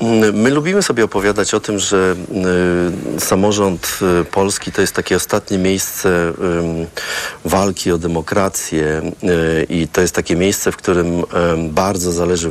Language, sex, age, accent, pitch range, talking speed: Polish, male, 40-59, native, 85-100 Hz, 125 wpm